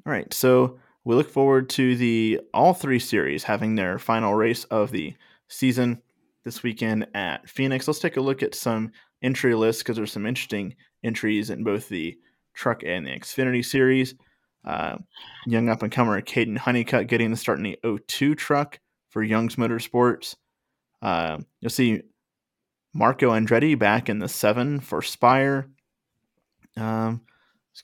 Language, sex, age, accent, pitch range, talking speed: English, male, 20-39, American, 110-130 Hz, 155 wpm